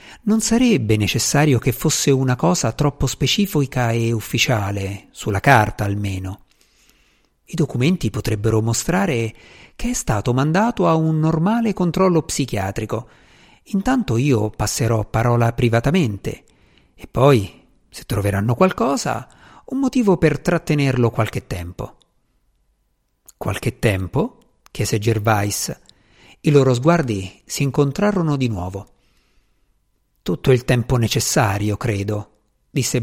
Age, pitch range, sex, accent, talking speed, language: 50-69, 110-155 Hz, male, native, 110 wpm, Italian